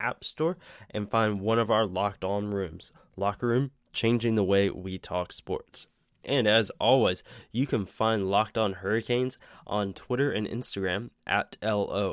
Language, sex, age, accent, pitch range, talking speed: English, male, 10-29, American, 100-115 Hz, 165 wpm